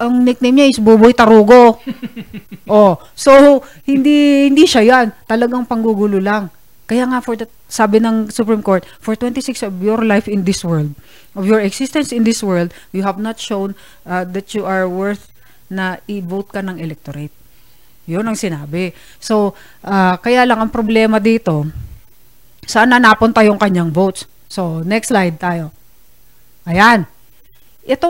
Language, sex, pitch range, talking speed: Filipino, female, 185-235 Hz, 155 wpm